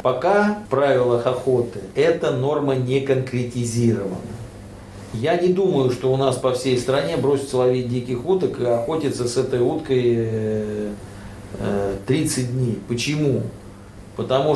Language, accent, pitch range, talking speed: Russian, native, 115-145 Hz, 125 wpm